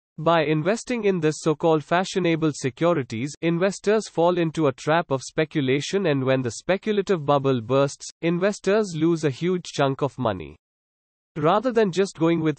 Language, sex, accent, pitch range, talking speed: English, male, Indian, 140-180 Hz, 155 wpm